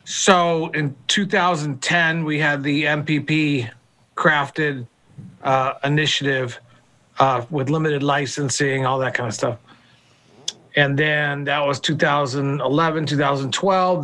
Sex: male